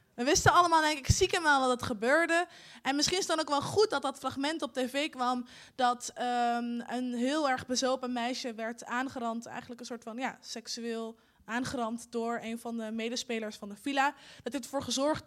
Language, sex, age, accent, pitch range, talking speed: Dutch, female, 20-39, Dutch, 235-300 Hz, 195 wpm